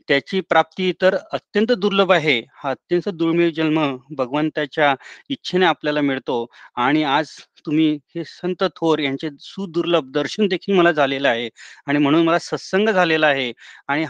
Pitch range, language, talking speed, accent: 130-165 Hz, Marathi, 75 wpm, native